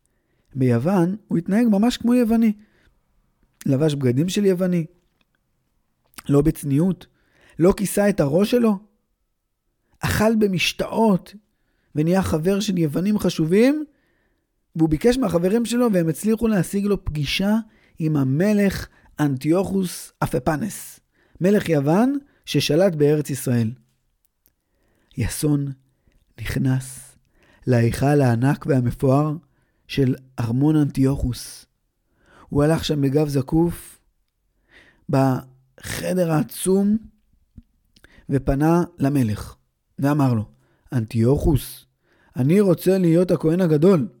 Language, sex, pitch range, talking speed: Hebrew, male, 130-195 Hz, 90 wpm